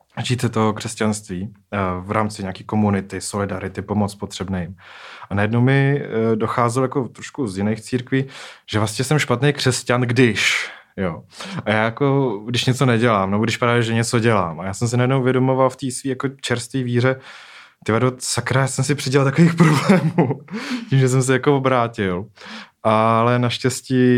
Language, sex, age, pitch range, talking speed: Czech, male, 20-39, 100-120 Hz, 165 wpm